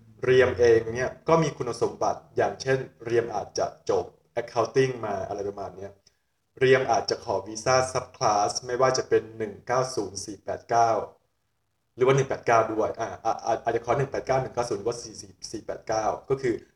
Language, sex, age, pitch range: Thai, male, 20-39, 110-130 Hz